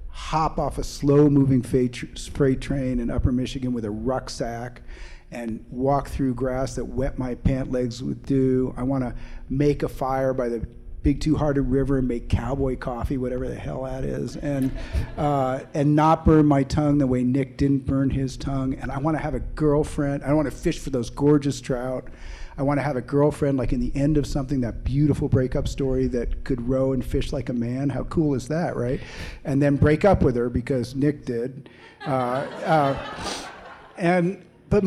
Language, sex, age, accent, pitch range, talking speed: English, male, 40-59, American, 125-150 Hz, 200 wpm